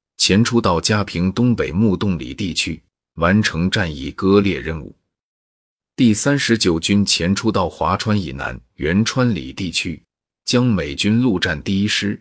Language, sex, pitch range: Chinese, male, 85-110 Hz